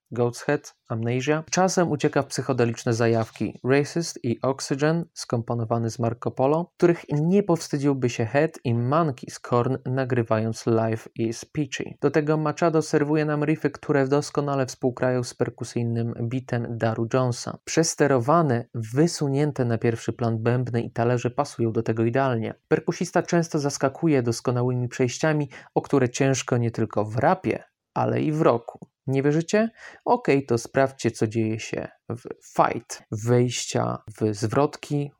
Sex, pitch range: male, 120-150 Hz